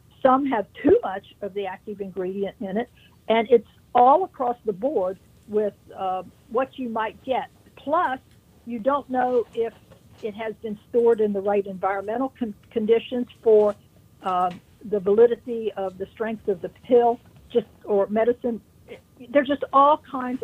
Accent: American